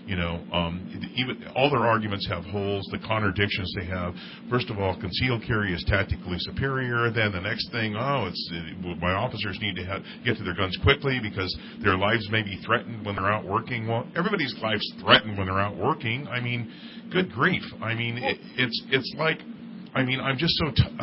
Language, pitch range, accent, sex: English, 100-125 Hz, American, male